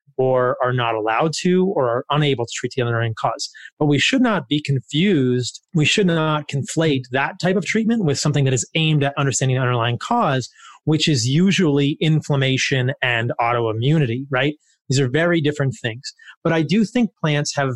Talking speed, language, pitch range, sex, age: 185 wpm, English, 130-175 Hz, male, 30-49